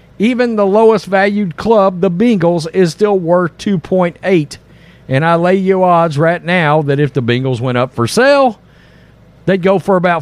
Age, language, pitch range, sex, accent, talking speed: 50-69, English, 145-200 Hz, male, American, 170 wpm